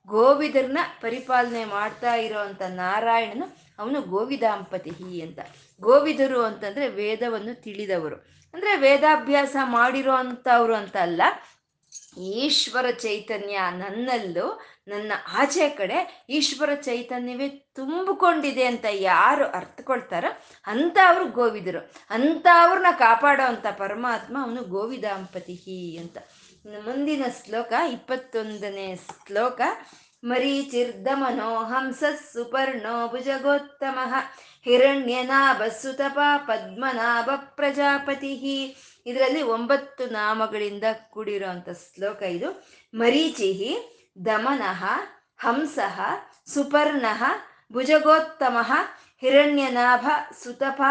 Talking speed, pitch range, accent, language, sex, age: 70 wpm, 215-280 Hz, native, Kannada, female, 20-39